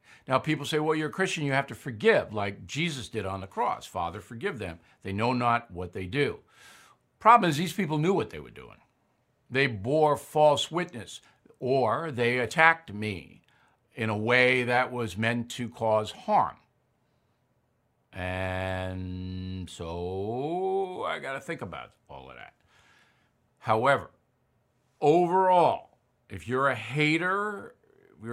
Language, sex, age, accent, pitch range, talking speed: English, male, 60-79, American, 110-155 Hz, 145 wpm